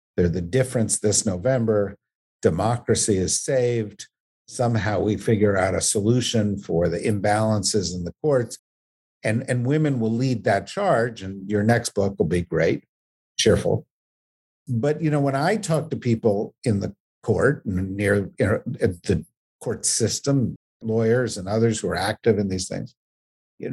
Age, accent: 50-69, American